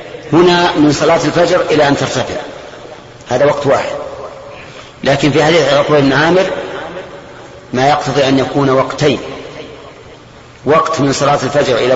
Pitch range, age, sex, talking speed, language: 140-155 Hz, 40-59, male, 125 wpm, Arabic